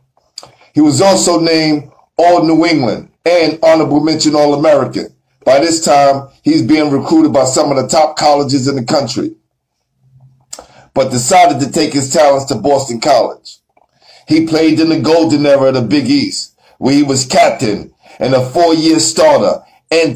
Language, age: English, 50-69